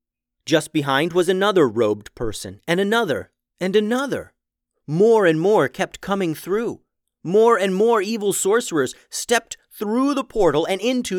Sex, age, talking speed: male, 30-49, 145 wpm